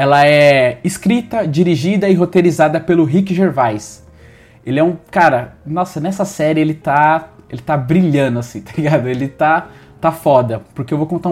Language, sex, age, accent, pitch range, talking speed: Portuguese, male, 20-39, Brazilian, 130-170 Hz, 170 wpm